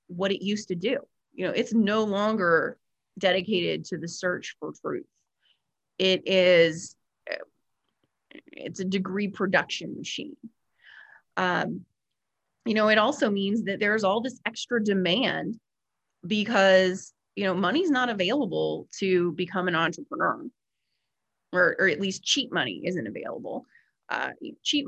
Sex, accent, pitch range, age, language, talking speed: female, American, 180-220 Hz, 30-49, English, 135 wpm